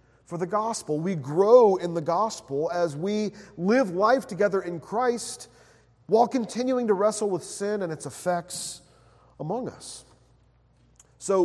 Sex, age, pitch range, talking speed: male, 40-59, 165-255 Hz, 140 wpm